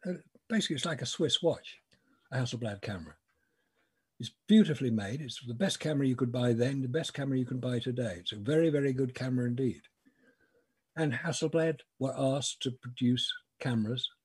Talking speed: 175 wpm